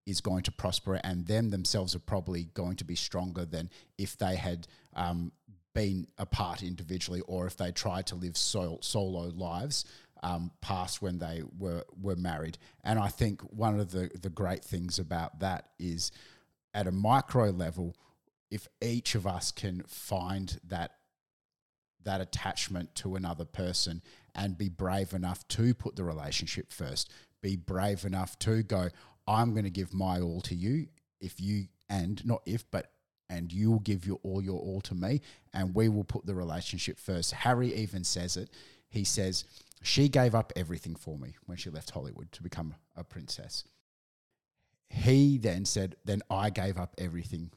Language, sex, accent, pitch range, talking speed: English, male, Australian, 85-100 Hz, 170 wpm